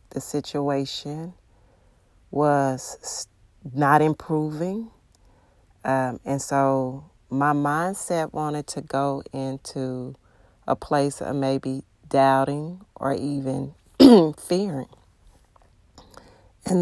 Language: English